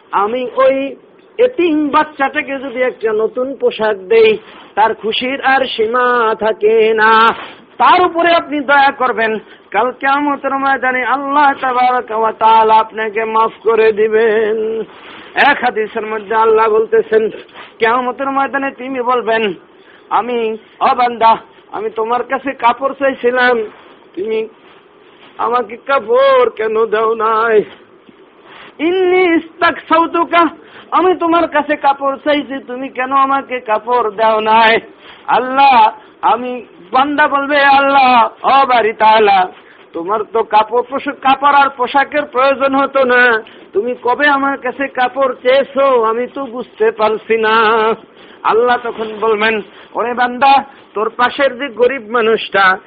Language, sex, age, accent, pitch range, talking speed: Bengali, male, 50-69, native, 225-295 Hz, 45 wpm